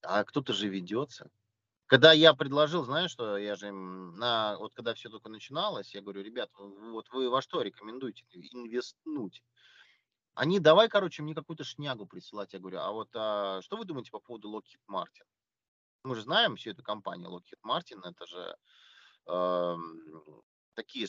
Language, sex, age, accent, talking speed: Russian, male, 30-49, native, 160 wpm